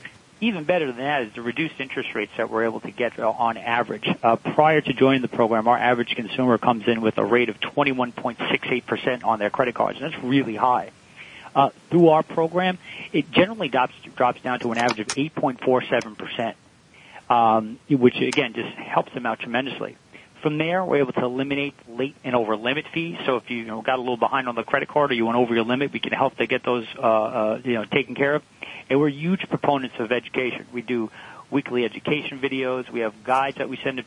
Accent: American